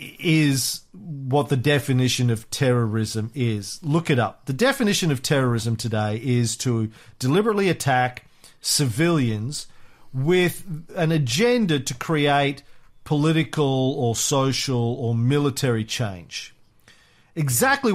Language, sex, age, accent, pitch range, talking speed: English, male, 40-59, Australian, 120-175 Hz, 105 wpm